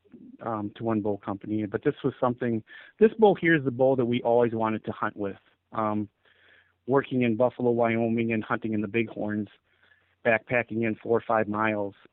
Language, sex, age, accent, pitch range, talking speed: English, male, 40-59, American, 105-115 Hz, 195 wpm